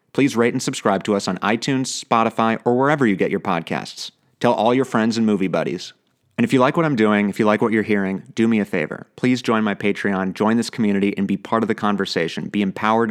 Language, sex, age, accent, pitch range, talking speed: English, male, 30-49, American, 105-130 Hz, 245 wpm